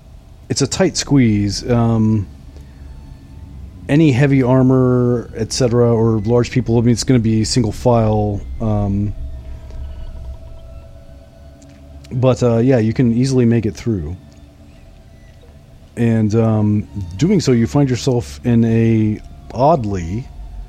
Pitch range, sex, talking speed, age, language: 95-120 Hz, male, 115 wpm, 40-59, English